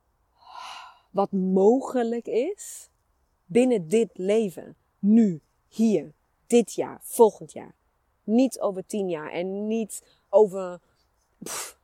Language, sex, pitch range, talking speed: Dutch, female, 155-205 Hz, 100 wpm